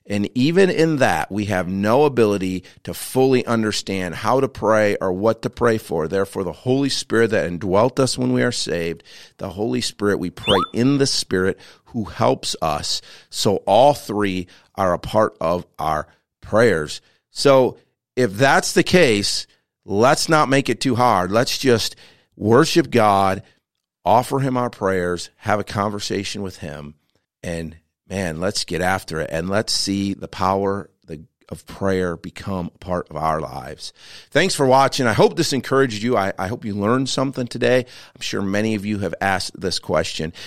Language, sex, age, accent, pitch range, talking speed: English, male, 50-69, American, 95-130 Hz, 170 wpm